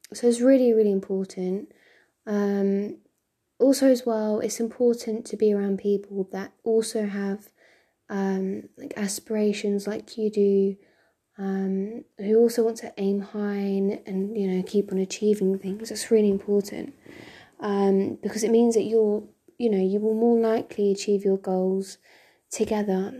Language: English